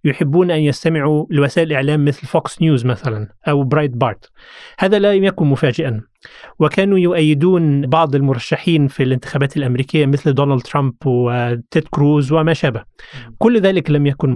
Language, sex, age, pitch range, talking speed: Arabic, male, 30-49, 140-175 Hz, 140 wpm